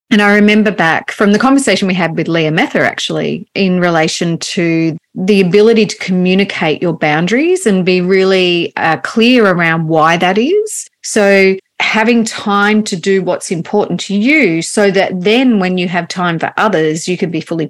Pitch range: 170-210 Hz